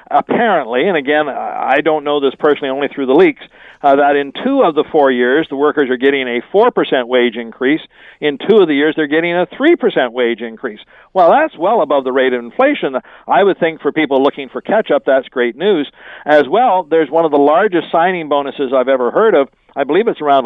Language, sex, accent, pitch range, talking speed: English, male, American, 135-170 Hz, 220 wpm